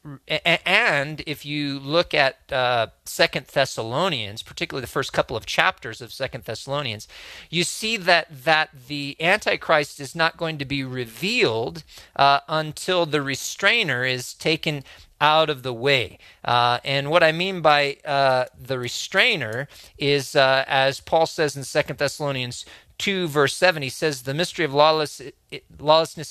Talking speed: 155 wpm